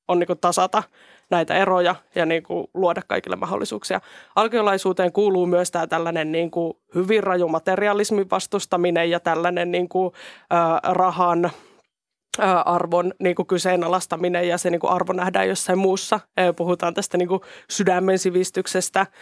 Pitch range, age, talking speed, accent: 175-195 Hz, 20-39, 130 wpm, native